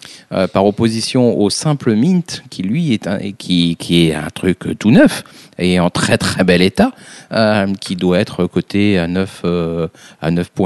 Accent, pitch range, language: French, 95-125 Hz, French